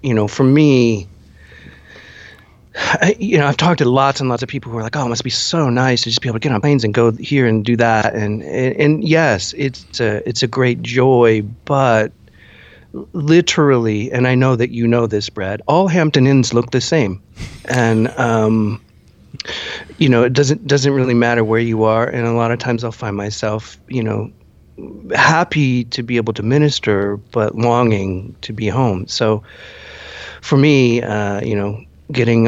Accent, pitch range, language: American, 105-125 Hz, English